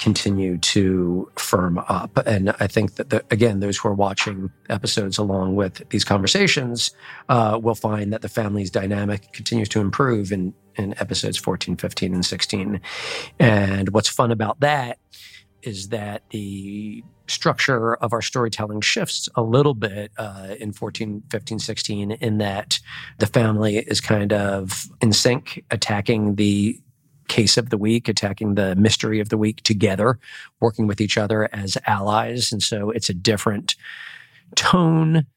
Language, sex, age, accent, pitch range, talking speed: English, male, 40-59, American, 100-115 Hz, 155 wpm